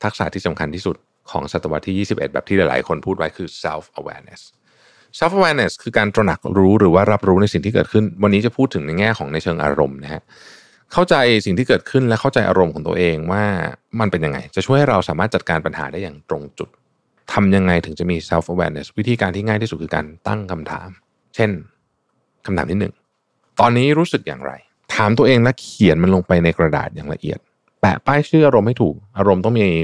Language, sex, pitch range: Thai, male, 85-115 Hz